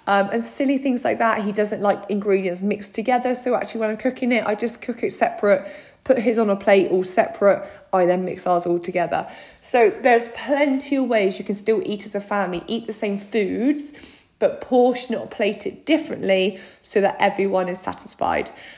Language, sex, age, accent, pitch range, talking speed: English, female, 20-39, British, 195-245 Hz, 205 wpm